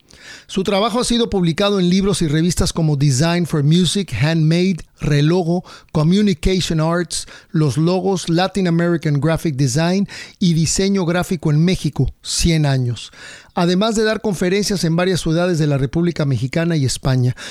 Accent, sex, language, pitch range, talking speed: Mexican, male, English, 155-190 Hz, 145 wpm